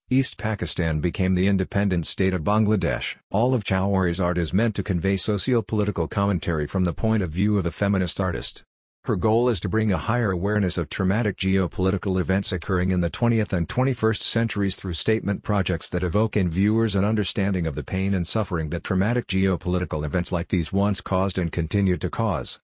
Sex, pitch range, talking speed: male, 90-105 Hz, 190 wpm